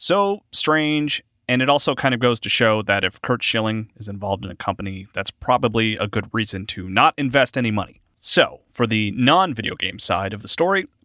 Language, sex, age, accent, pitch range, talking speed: English, male, 30-49, American, 100-130 Hz, 205 wpm